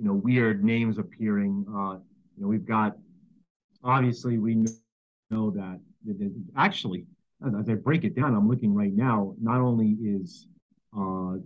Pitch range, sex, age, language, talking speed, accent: 105-135 Hz, male, 40-59, English, 150 wpm, American